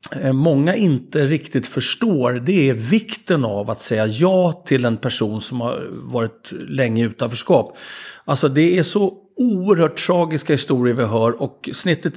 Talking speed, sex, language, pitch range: 150 wpm, male, Swedish, 130-160 Hz